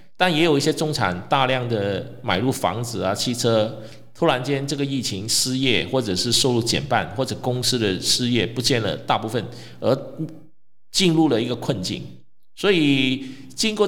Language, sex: Chinese, male